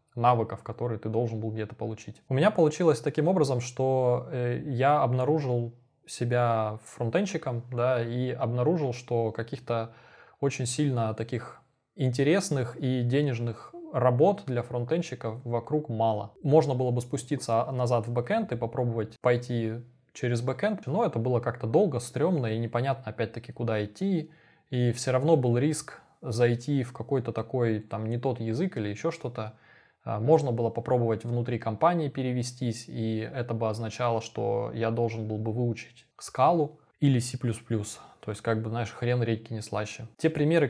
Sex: male